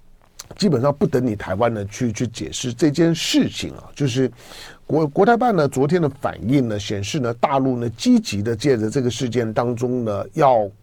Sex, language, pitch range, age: male, Chinese, 110-155 Hz, 50-69